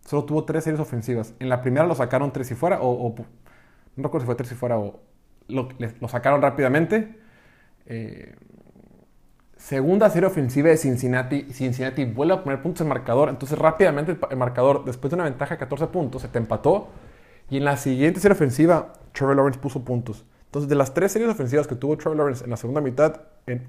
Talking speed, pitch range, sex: 205 wpm, 120-150 Hz, male